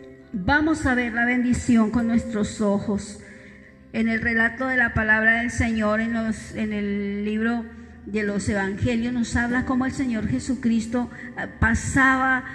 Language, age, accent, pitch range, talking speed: Spanish, 50-69, American, 220-260 Hz, 150 wpm